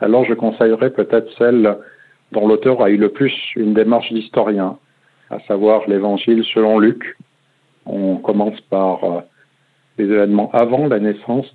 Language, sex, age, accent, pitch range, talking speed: French, male, 50-69, French, 105-125 Hz, 140 wpm